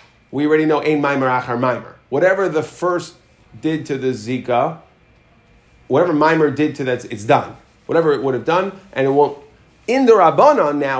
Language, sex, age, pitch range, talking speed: English, male, 40-59, 130-165 Hz, 180 wpm